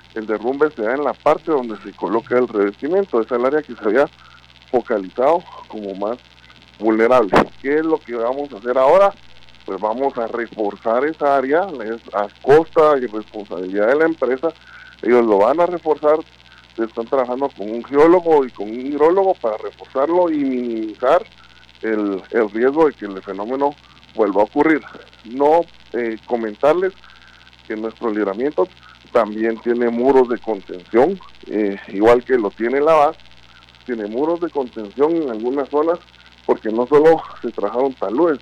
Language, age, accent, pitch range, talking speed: Spanish, 20-39, Mexican, 105-150 Hz, 160 wpm